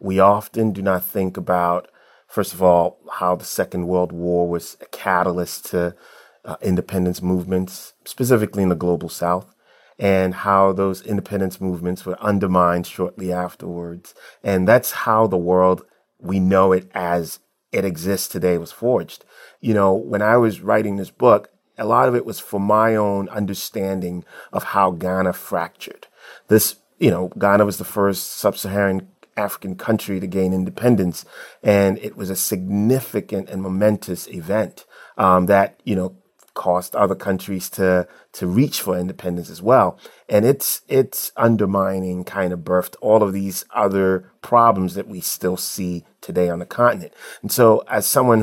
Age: 30-49